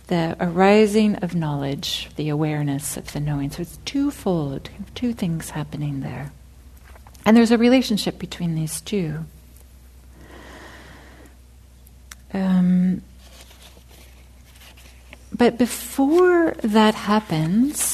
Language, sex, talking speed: English, female, 95 wpm